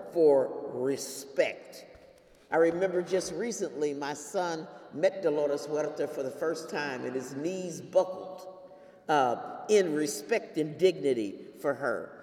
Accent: American